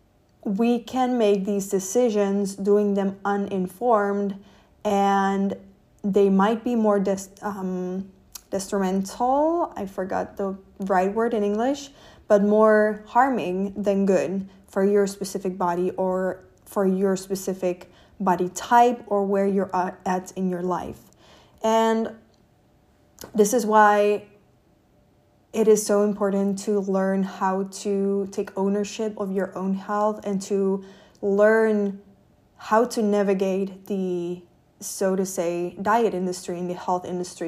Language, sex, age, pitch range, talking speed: English, female, 20-39, 190-215 Hz, 125 wpm